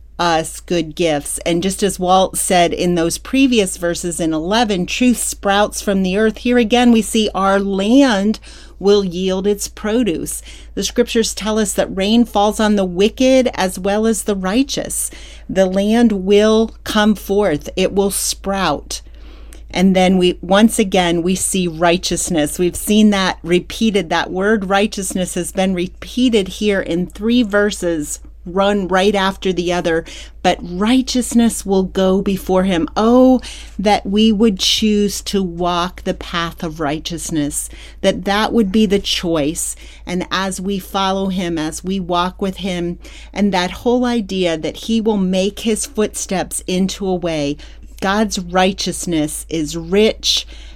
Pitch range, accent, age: 175-215 Hz, American, 40-59